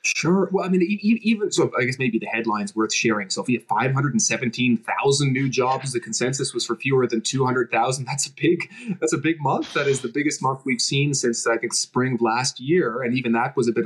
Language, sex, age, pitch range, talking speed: English, male, 20-39, 120-170 Hz, 240 wpm